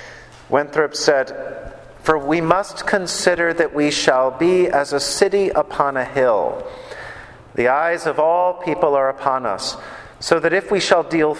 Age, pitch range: 50-69, 125-165 Hz